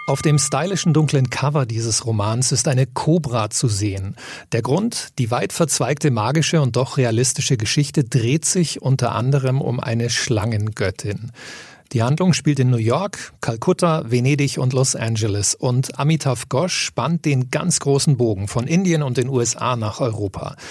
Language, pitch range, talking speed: German, 120-150 Hz, 160 wpm